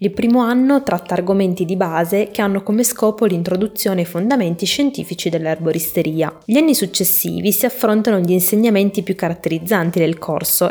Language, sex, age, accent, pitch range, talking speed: Italian, female, 20-39, native, 170-215 Hz, 150 wpm